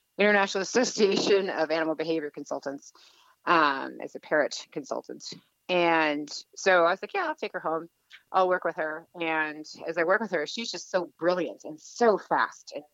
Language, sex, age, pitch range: English, female, 30-49, 150-180 Hz